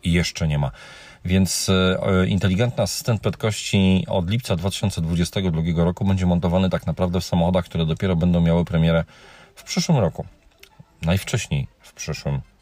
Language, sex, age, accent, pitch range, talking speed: Polish, male, 40-59, native, 80-100 Hz, 135 wpm